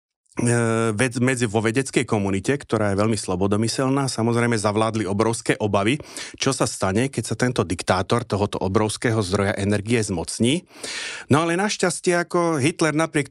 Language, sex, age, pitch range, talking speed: Slovak, male, 40-59, 110-140 Hz, 130 wpm